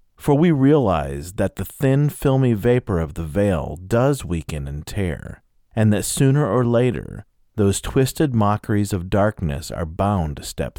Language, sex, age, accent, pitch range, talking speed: English, male, 40-59, American, 85-115 Hz, 160 wpm